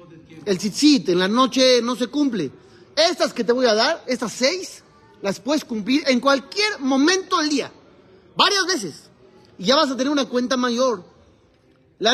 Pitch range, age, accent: 210-290 Hz, 40-59, Mexican